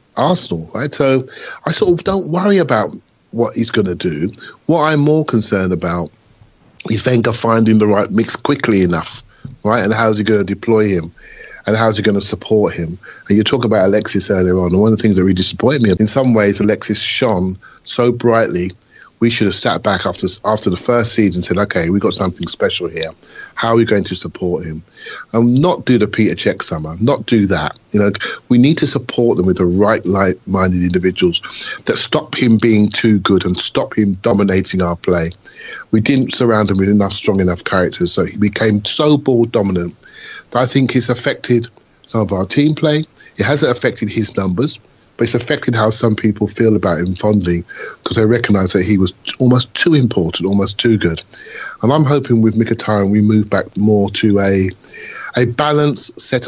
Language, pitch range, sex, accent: English, 95-120 Hz, male, British